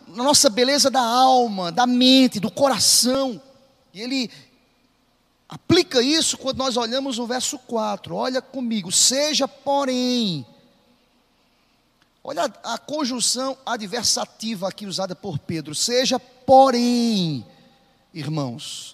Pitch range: 190-260 Hz